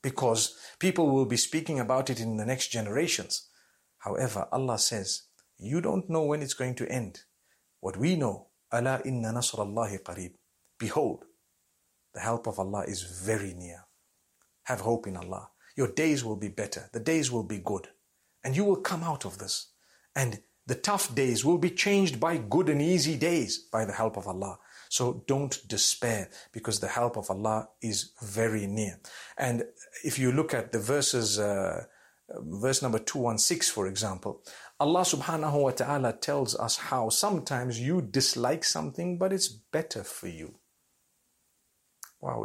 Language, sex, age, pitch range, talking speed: English, male, 50-69, 110-150 Hz, 160 wpm